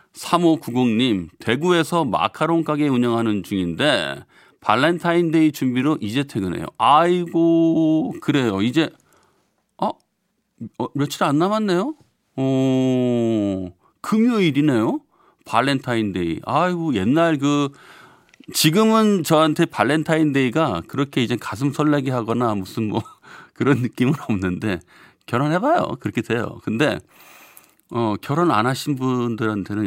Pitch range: 100-150 Hz